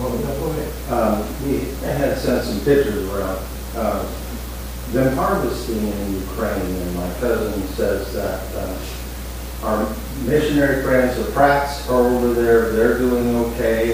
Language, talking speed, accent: English, 130 wpm, American